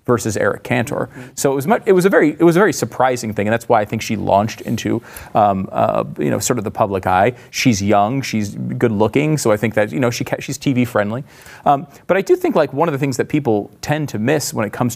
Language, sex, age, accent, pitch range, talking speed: English, male, 30-49, American, 115-170 Hz, 265 wpm